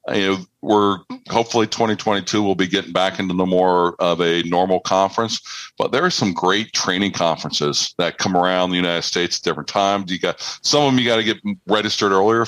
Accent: American